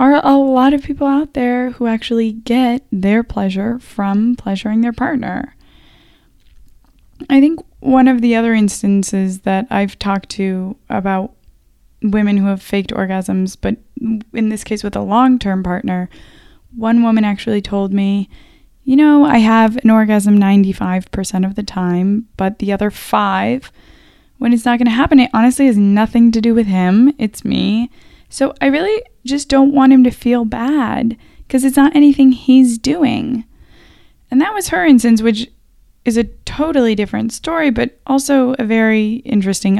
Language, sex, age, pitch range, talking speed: English, female, 10-29, 210-265 Hz, 165 wpm